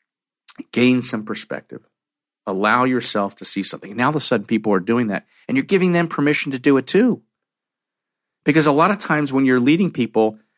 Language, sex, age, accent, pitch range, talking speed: English, male, 50-69, American, 100-130 Hz, 200 wpm